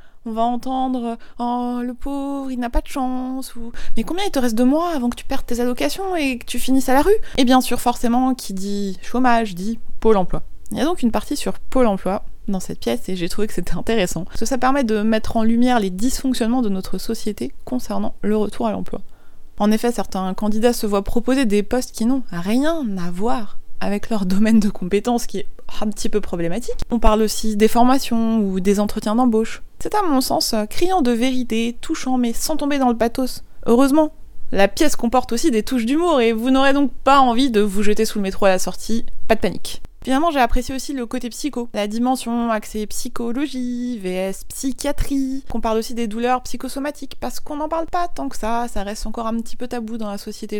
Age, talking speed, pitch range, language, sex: 20-39, 235 wpm, 215-260 Hz, French, female